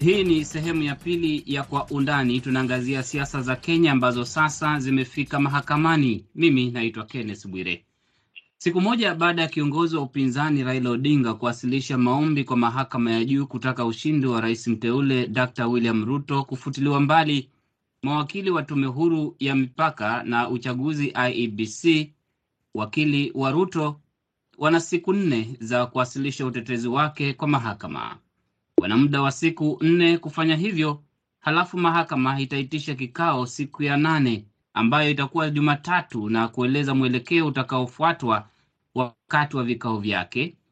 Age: 30-49